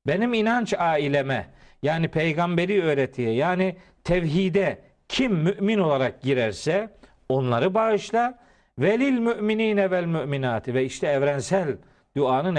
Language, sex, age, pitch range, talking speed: Turkish, male, 50-69, 140-195 Hz, 105 wpm